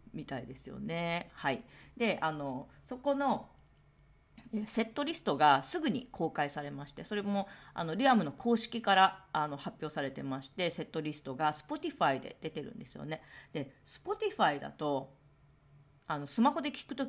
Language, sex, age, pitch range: Japanese, female, 40-59, 145-235 Hz